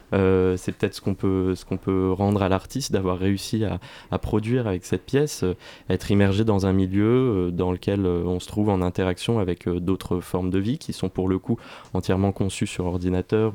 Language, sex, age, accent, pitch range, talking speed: French, male, 20-39, French, 90-105 Hz, 220 wpm